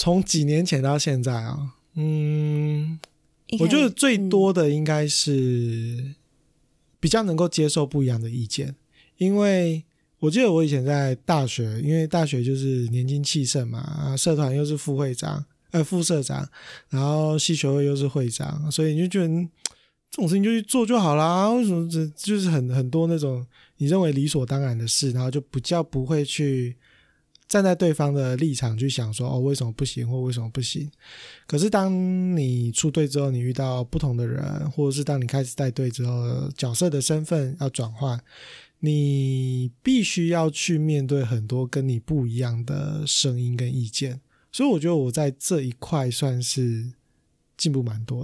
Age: 20-39